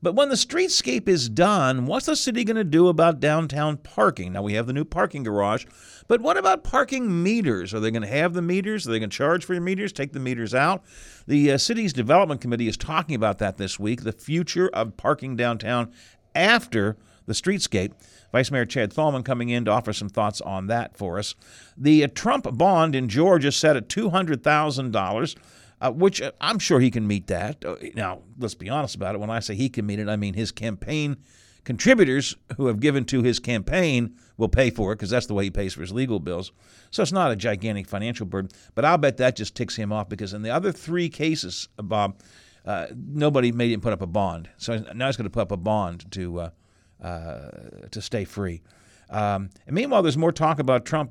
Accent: American